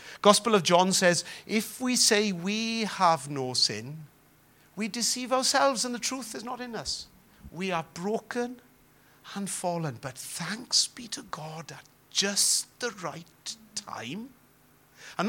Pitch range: 155-210 Hz